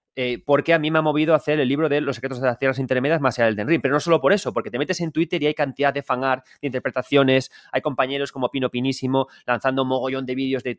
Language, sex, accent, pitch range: Spanish, male, Spanish, 125-160 Hz